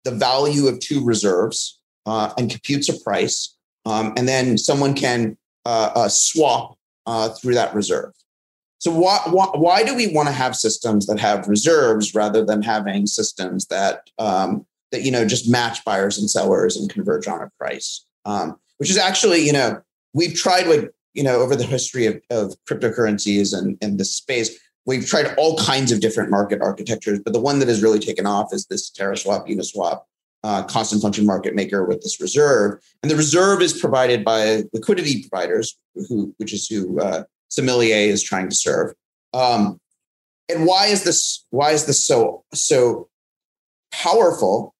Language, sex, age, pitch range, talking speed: English, male, 30-49, 110-160 Hz, 175 wpm